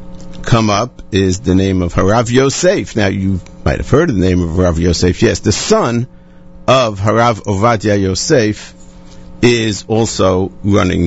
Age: 50-69